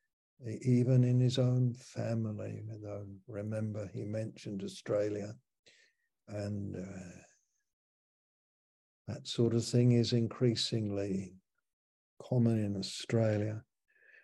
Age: 60-79